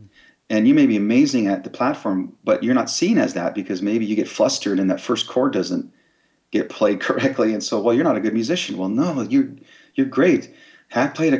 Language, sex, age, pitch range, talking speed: English, male, 40-59, 105-135 Hz, 225 wpm